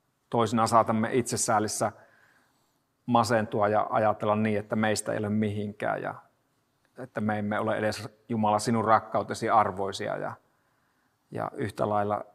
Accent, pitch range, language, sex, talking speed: native, 105-125 Hz, Finnish, male, 125 wpm